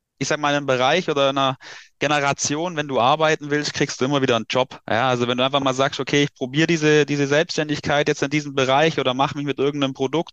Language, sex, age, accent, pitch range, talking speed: German, male, 30-49, German, 135-155 Hz, 245 wpm